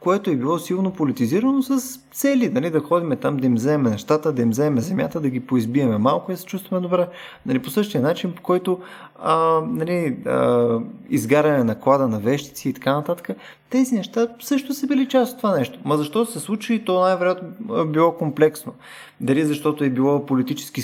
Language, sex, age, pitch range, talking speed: Bulgarian, male, 20-39, 130-195 Hz, 185 wpm